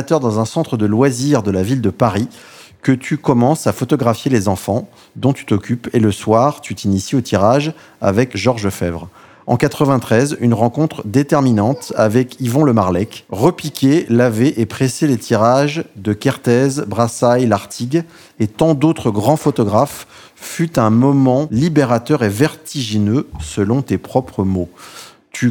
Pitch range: 105-140 Hz